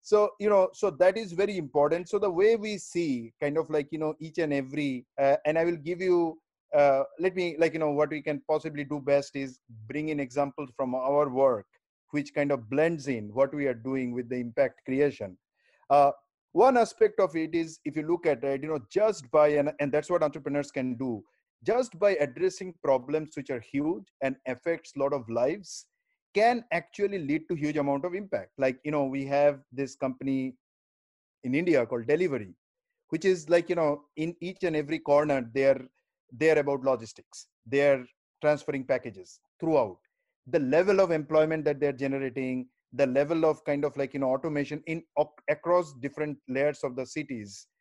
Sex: male